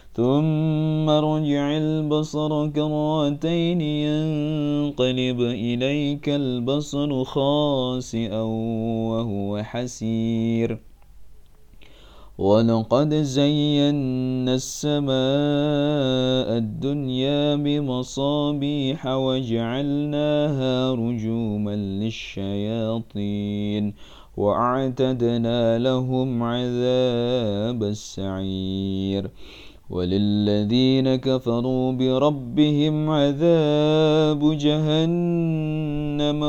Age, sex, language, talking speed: 30-49, male, Indonesian, 45 wpm